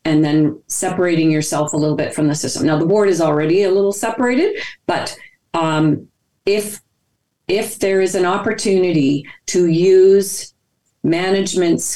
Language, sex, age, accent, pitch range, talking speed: English, female, 40-59, American, 160-200 Hz, 145 wpm